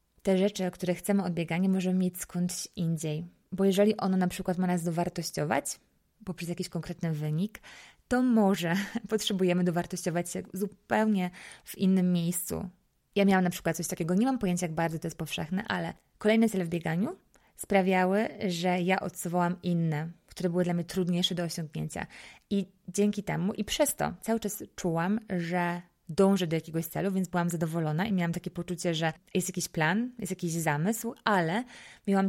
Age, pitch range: 20-39, 170-205 Hz